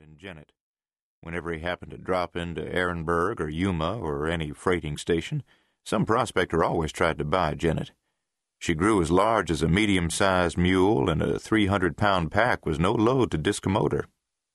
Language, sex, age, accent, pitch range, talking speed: English, male, 50-69, American, 80-95 Hz, 175 wpm